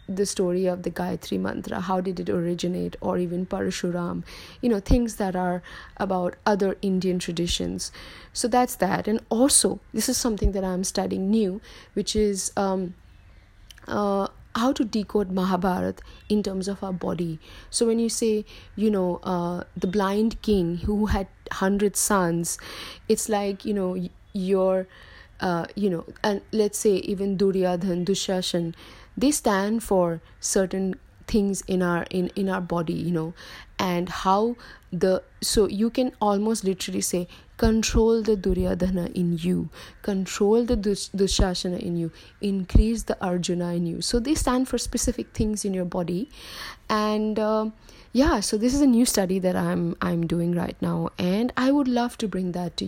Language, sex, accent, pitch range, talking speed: English, female, Indian, 180-215 Hz, 165 wpm